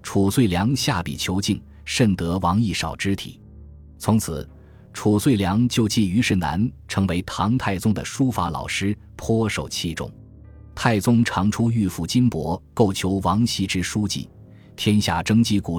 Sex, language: male, Chinese